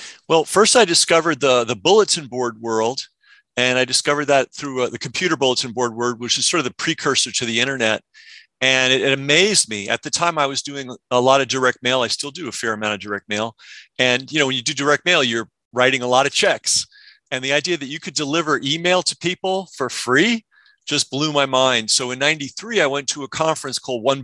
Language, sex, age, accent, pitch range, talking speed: English, male, 40-59, American, 125-150 Hz, 235 wpm